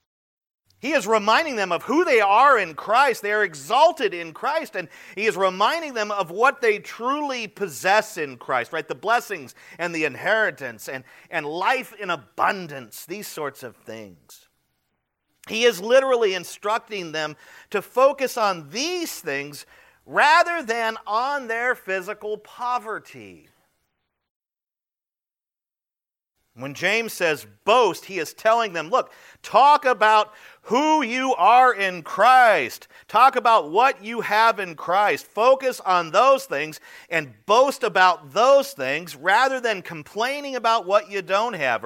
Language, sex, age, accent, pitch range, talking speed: English, male, 50-69, American, 170-255 Hz, 140 wpm